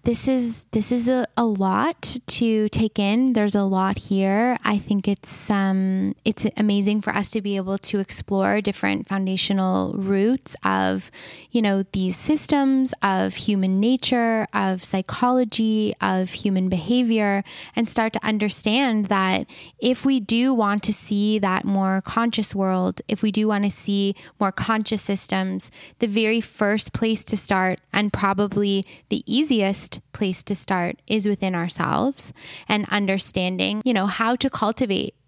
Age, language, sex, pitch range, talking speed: 10-29, English, female, 185-215 Hz, 155 wpm